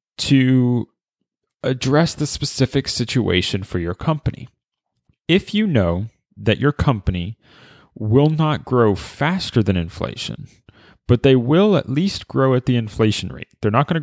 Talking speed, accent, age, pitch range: 145 wpm, American, 30-49, 100-135 Hz